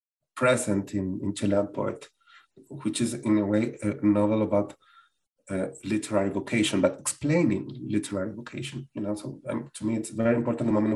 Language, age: English, 30-49